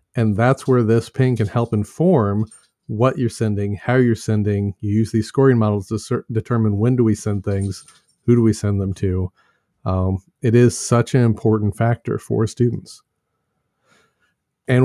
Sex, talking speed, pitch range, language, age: male, 170 wpm, 110-125 Hz, English, 40-59